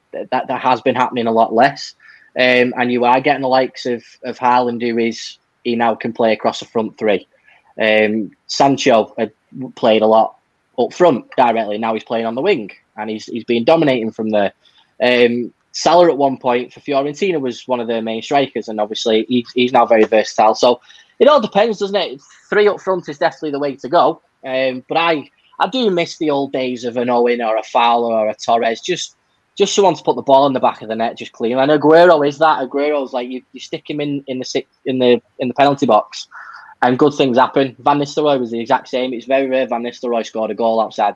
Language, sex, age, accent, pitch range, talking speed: English, male, 10-29, British, 115-145 Hz, 230 wpm